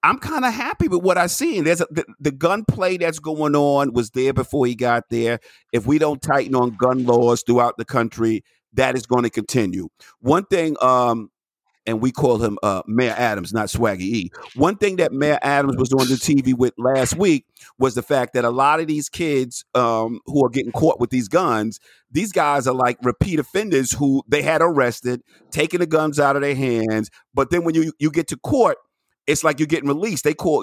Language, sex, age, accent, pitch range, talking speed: English, male, 50-69, American, 120-155 Hz, 215 wpm